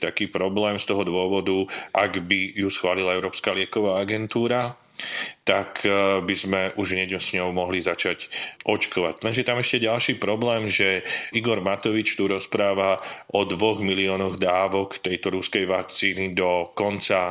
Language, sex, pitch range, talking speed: Slovak, male, 95-100 Hz, 145 wpm